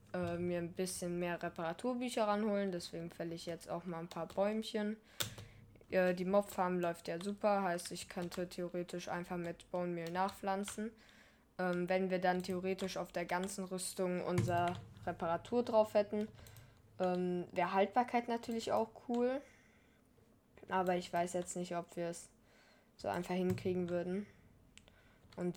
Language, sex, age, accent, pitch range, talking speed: German, female, 10-29, German, 165-185 Hz, 140 wpm